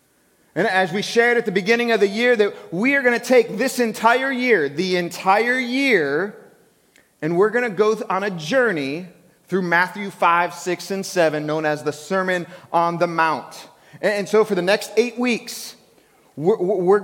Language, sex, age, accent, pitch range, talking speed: English, male, 30-49, American, 165-225 Hz, 180 wpm